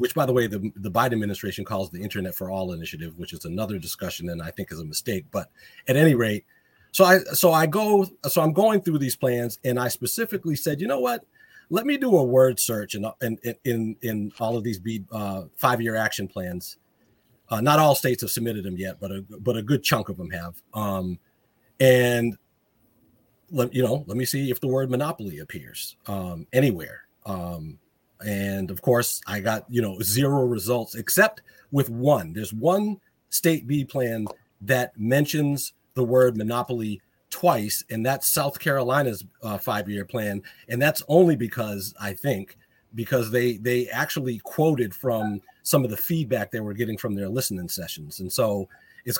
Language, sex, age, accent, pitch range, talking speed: English, male, 40-59, American, 100-130 Hz, 190 wpm